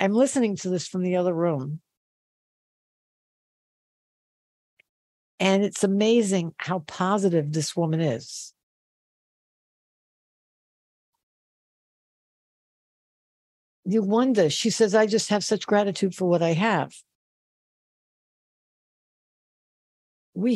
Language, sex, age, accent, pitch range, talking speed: English, female, 60-79, American, 170-220 Hz, 90 wpm